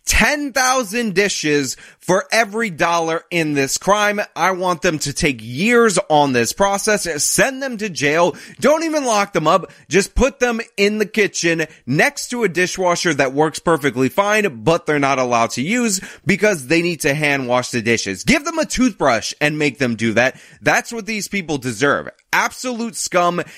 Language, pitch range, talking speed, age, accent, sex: English, 130-200 Hz, 180 wpm, 20-39, American, male